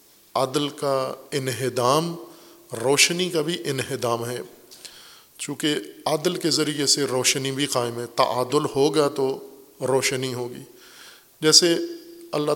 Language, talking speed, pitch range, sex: Urdu, 115 wpm, 125-145 Hz, male